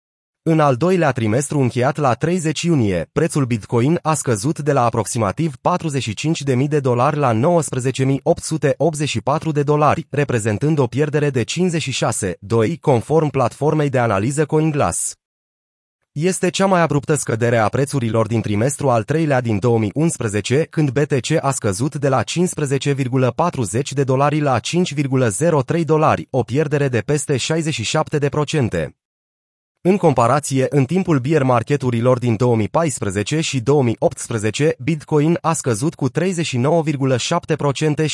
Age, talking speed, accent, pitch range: 30-49, 120 wpm, native, 125-155 Hz